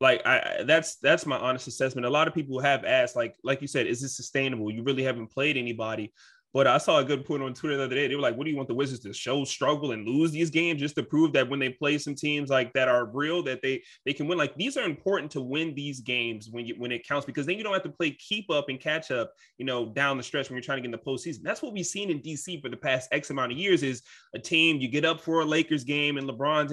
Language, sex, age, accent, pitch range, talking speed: English, male, 20-39, American, 125-150 Hz, 300 wpm